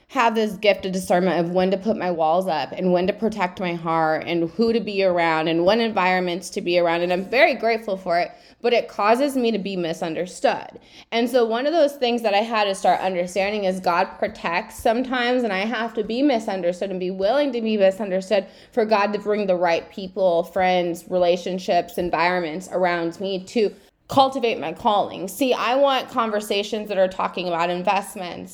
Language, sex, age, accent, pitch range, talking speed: English, female, 20-39, American, 185-235 Hz, 200 wpm